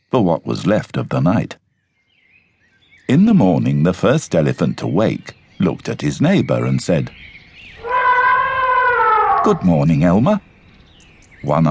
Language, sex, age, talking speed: English, male, 60-79, 125 wpm